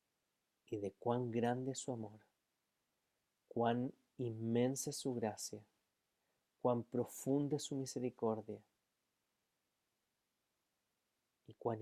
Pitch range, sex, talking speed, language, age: 110-130 Hz, male, 95 wpm, Spanish, 30-49